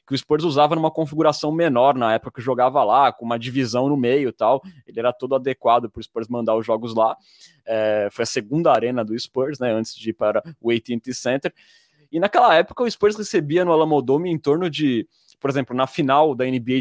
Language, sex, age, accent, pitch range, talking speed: Portuguese, male, 20-39, Brazilian, 125-175 Hz, 215 wpm